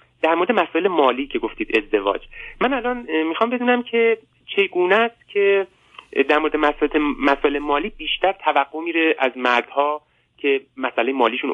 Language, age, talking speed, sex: Persian, 30-49, 140 wpm, male